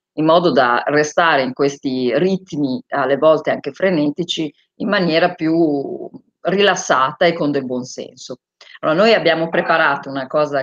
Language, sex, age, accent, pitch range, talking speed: Italian, female, 40-59, native, 135-175 Hz, 145 wpm